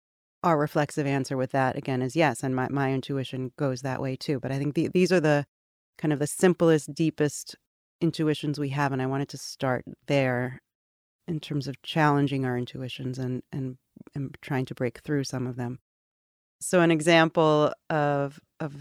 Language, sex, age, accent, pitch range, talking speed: English, female, 30-49, American, 130-155 Hz, 185 wpm